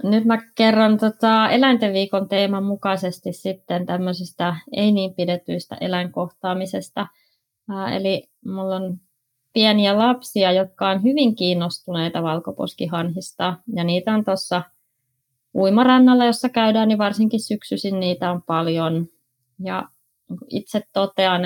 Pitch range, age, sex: 165-200 Hz, 20-39, female